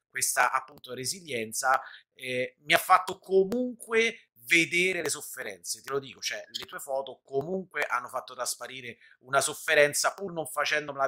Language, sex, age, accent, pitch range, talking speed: Italian, male, 30-49, native, 125-170 Hz, 145 wpm